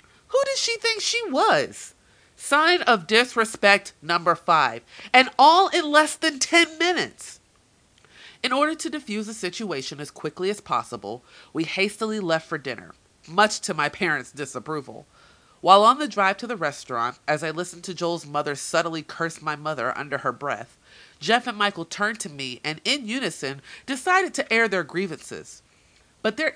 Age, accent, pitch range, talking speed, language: 30-49, American, 160-260 Hz, 165 wpm, English